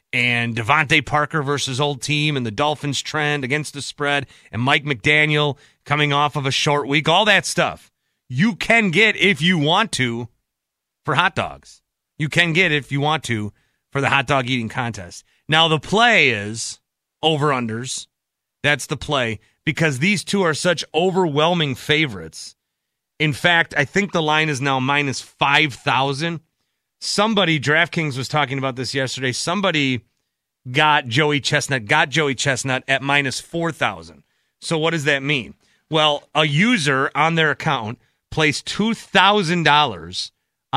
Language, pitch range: English, 130-160 Hz